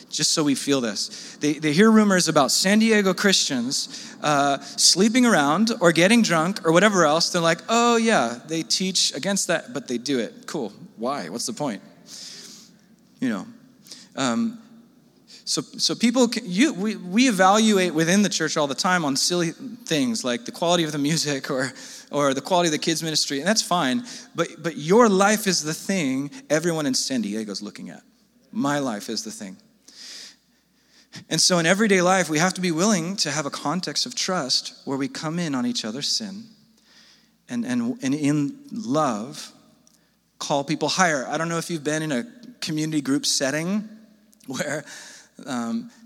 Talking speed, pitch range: 180 wpm, 150-235 Hz